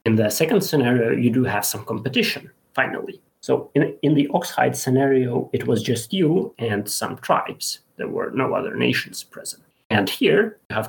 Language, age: English, 30-49